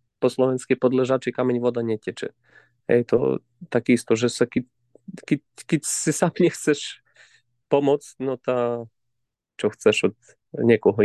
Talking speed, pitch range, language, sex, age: 135 wpm, 115-125 Hz, Slovak, male, 30-49